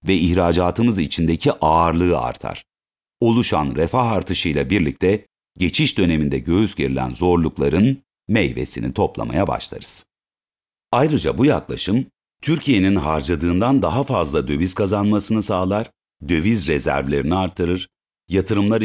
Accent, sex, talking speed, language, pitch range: native, male, 100 wpm, Turkish, 85-115 Hz